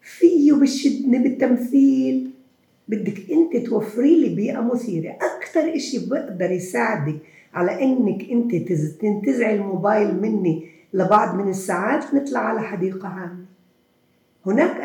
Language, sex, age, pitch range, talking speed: Arabic, female, 50-69, 185-250 Hz, 105 wpm